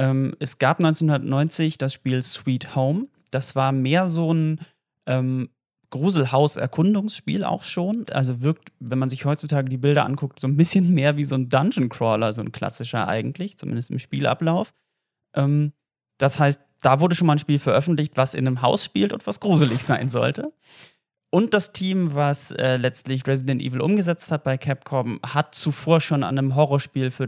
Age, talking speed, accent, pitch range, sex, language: 30-49, 175 wpm, German, 130-160 Hz, male, German